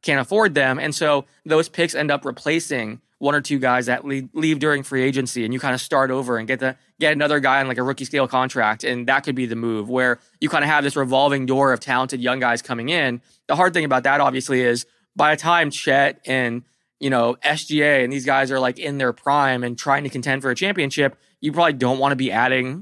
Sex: male